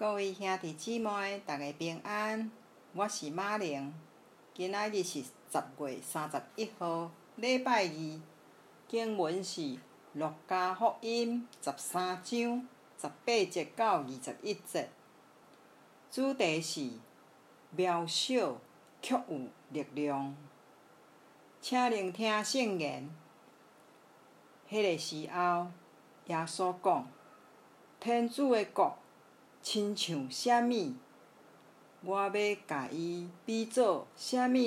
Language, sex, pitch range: Chinese, female, 165-225 Hz